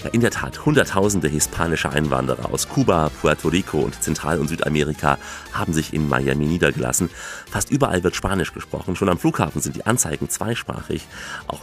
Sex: male